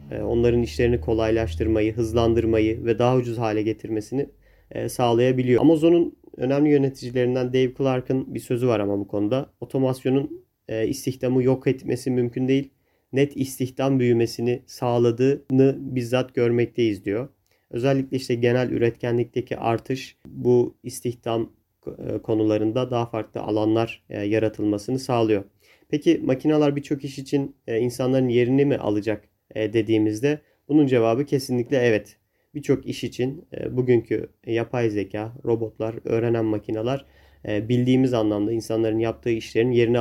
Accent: native